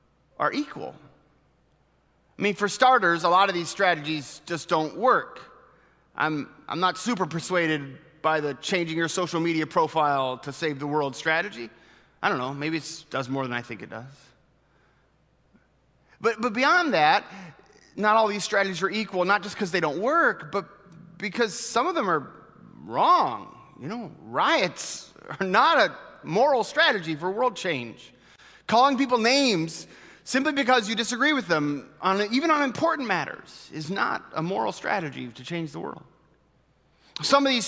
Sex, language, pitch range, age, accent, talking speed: male, English, 155-230 Hz, 30-49, American, 160 wpm